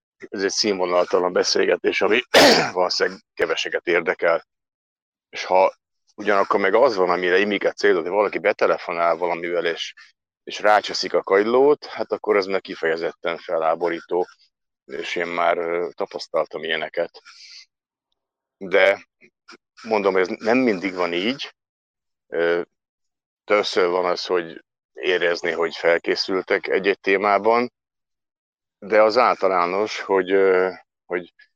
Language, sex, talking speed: Hungarian, male, 115 wpm